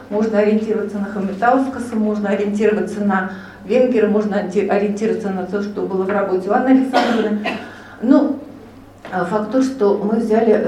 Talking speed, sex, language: 140 wpm, female, Russian